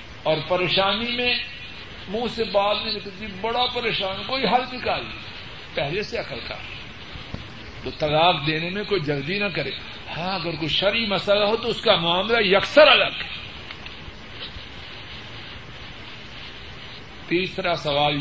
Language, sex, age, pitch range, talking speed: Urdu, male, 50-69, 125-195 Hz, 130 wpm